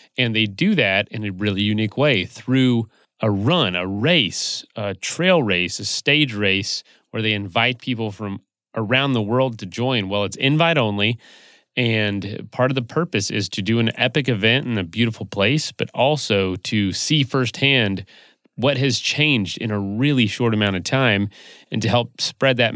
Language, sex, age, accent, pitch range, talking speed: English, male, 30-49, American, 100-130 Hz, 180 wpm